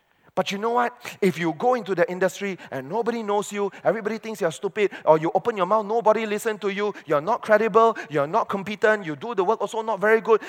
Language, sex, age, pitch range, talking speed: English, male, 30-49, 130-205 Hz, 235 wpm